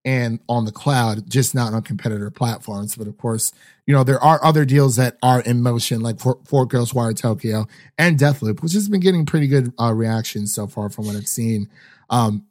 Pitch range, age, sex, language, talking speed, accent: 110-140 Hz, 30-49, male, English, 215 wpm, American